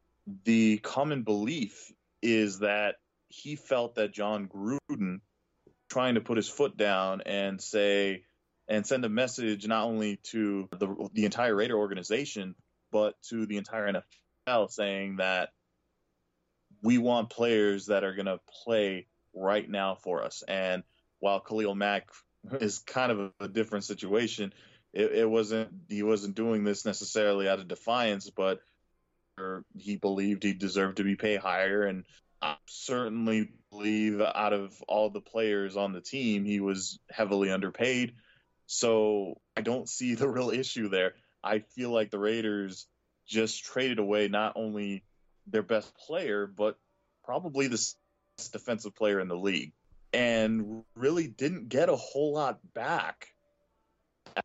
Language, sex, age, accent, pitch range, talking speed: English, male, 20-39, American, 100-115 Hz, 150 wpm